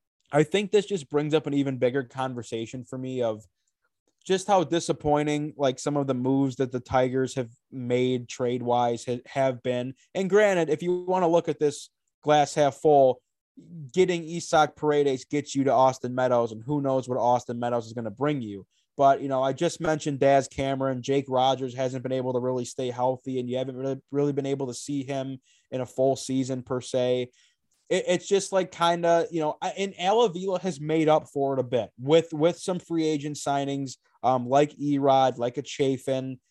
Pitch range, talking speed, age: 130-150 Hz, 200 wpm, 20-39